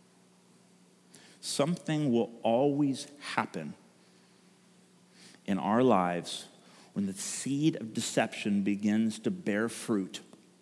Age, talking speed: 40-59, 90 wpm